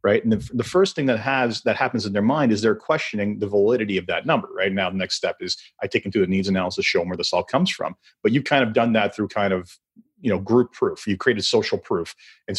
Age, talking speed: 40-59, 280 wpm